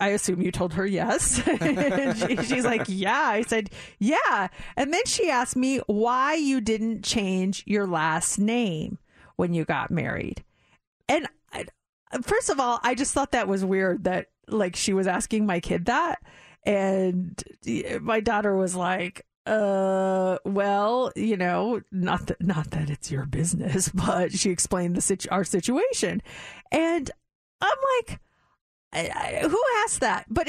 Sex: female